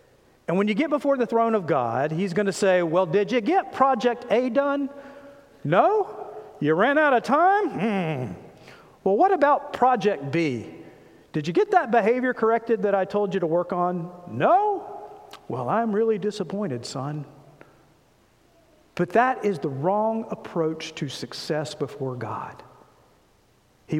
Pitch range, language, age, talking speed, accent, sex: 150-220 Hz, English, 50-69, 155 wpm, American, male